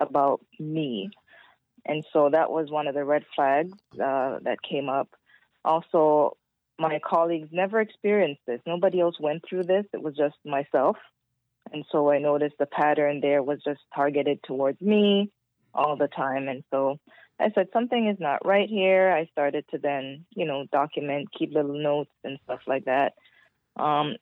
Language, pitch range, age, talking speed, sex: English, 145-170 Hz, 20-39, 170 wpm, female